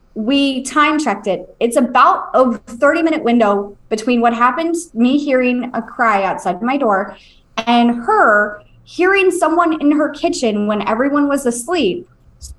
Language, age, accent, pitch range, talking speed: English, 20-39, American, 205-270 Hz, 150 wpm